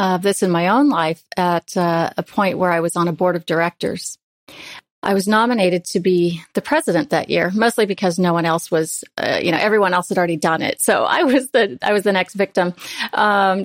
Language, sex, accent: English, female, American